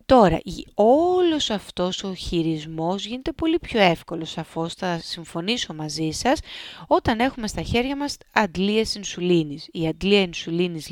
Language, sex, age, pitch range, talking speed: Greek, female, 30-49, 165-220 Hz, 130 wpm